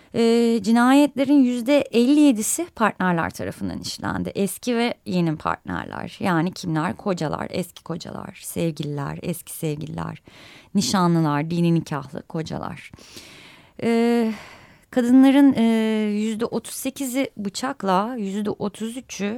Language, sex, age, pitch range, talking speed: Turkish, female, 30-49, 165-225 Hz, 85 wpm